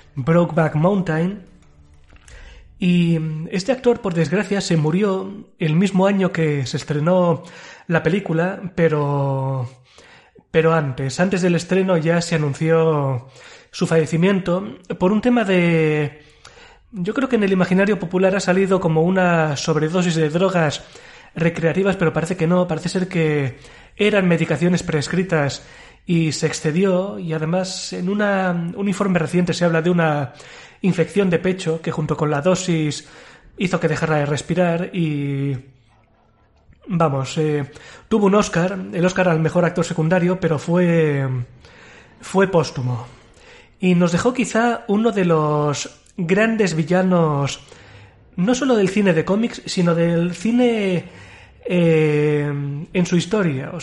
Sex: male